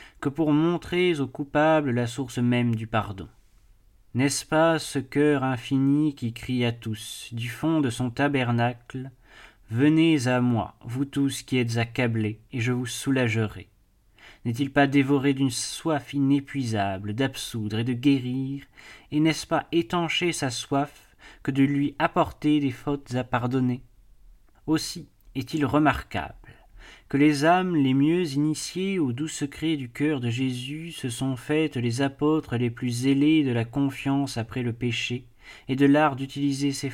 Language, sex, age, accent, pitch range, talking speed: French, male, 30-49, French, 120-145 Hz, 160 wpm